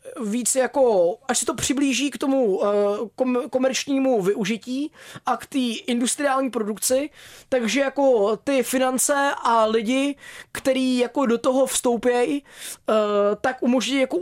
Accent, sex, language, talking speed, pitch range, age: native, male, Czech, 130 wpm, 235-275 Hz, 20-39